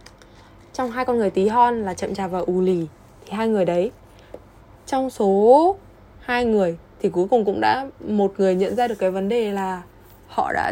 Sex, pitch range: female, 180-235 Hz